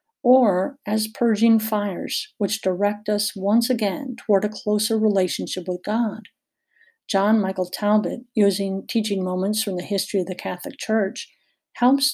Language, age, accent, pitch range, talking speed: English, 50-69, American, 195-235 Hz, 145 wpm